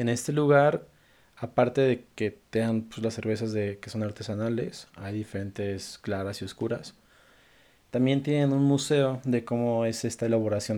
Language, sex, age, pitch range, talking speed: Spanish, male, 20-39, 105-125 Hz, 155 wpm